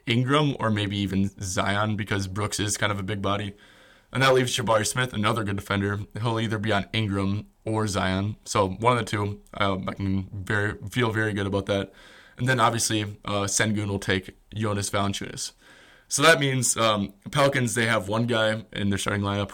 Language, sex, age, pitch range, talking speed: English, male, 20-39, 100-115 Hz, 195 wpm